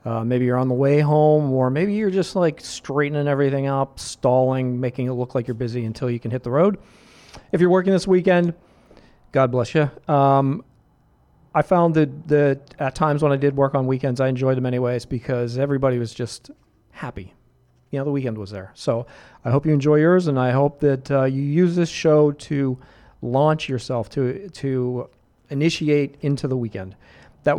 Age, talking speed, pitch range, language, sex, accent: 40-59, 195 wpm, 120-150 Hz, English, male, American